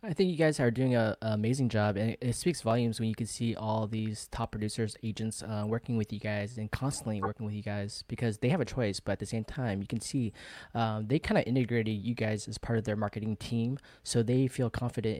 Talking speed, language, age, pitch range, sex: 255 wpm, English, 20-39, 105-120 Hz, male